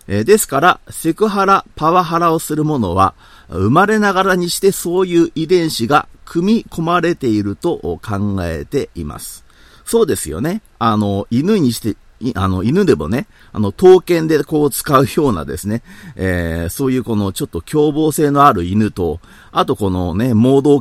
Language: Japanese